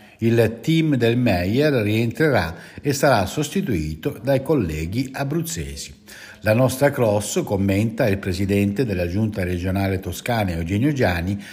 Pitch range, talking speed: 95-135 Hz, 120 wpm